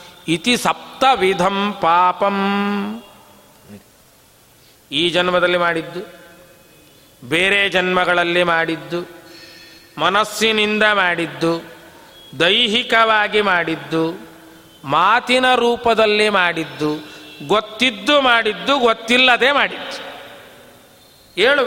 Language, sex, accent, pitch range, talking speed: Kannada, male, native, 165-240 Hz, 60 wpm